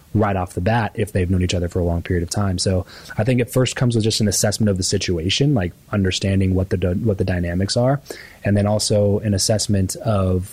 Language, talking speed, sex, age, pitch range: English, 240 wpm, male, 20-39, 95-105 Hz